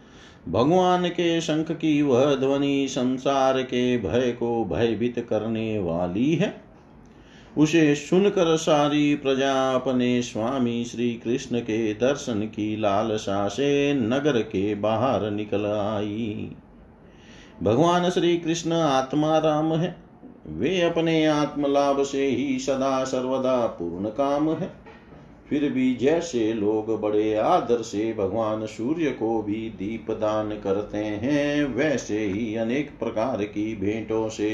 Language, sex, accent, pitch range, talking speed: Hindi, male, native, 110-150 Hz, 120 wpm